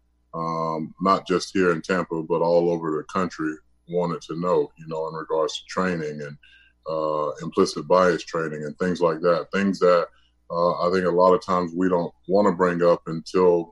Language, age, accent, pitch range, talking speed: English, 30-49, American, 80-90 Hz, 195 wpm